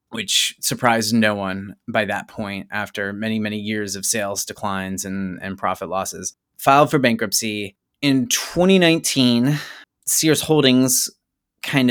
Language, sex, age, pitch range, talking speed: English, male, 30-49, 110-135 Hz, 130 wpm